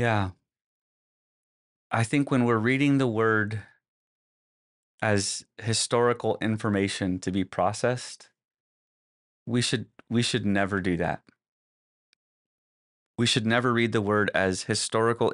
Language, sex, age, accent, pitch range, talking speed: English, male, 30-49, American, 90-110 Hz, 115 wpm